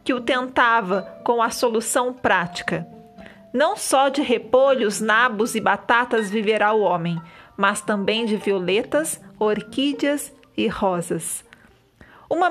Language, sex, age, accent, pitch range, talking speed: Portuguese, female, 40-59, Brazilian, 205-265 Hz, 120 wpm